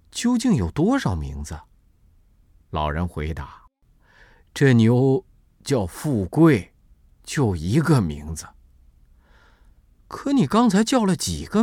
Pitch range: 90-130 Hz